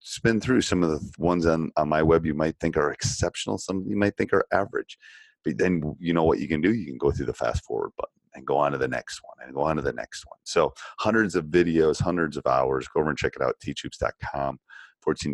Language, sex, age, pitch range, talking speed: English, male, 30-49, 70-90 Hz, 260 wpm